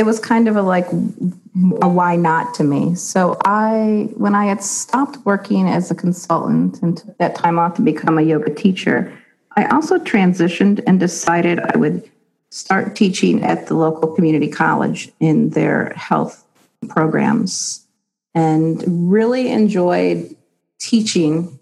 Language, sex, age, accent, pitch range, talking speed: English, female, 40-59, American, 160-200 Hz, 145 wpm